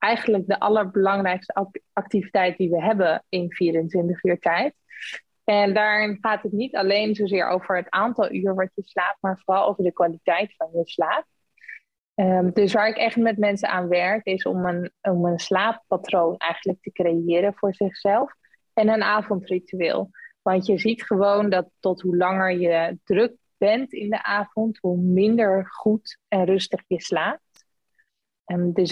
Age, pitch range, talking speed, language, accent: 20-39, 185-210 Hz, 160 wpm, Dutch, Dutch